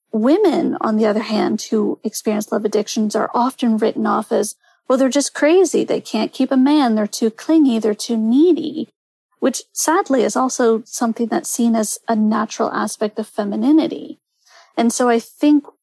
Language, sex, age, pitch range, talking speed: English, female, 30-49, 220-285 Hz, 175 wpm